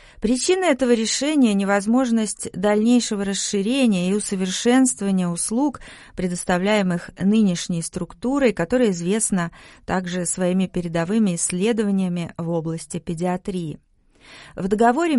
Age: 30-49